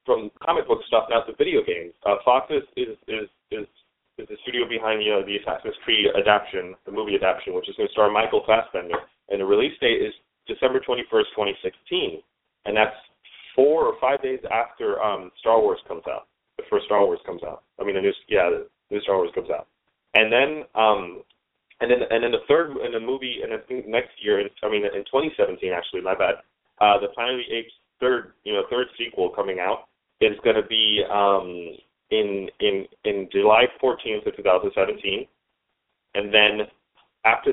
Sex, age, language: male, 30-49, English